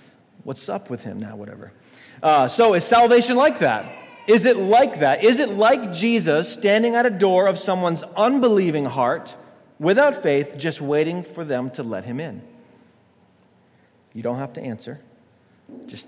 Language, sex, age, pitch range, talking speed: English, male, 40-59, 160-220 Hz, 165 wpm